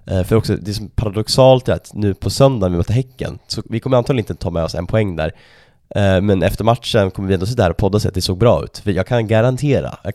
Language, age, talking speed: Swedish, 20-39, 265 wpm